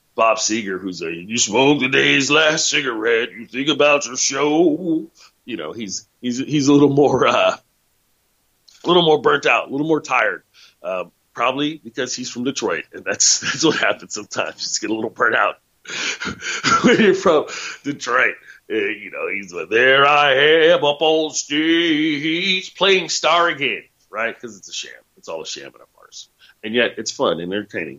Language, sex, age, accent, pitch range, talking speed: English, male, 40-59, American, 115-185 Hz, 185 wpm